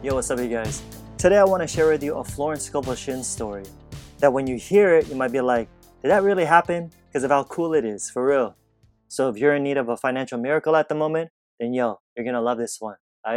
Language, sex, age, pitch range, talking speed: English, male, 20-39, 115-145 Hz, 255 wpm